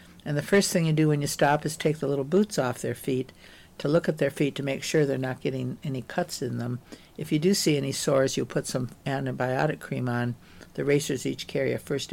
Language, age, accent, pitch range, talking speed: English, 60-79, American, 130-155 Hz, 245 wpm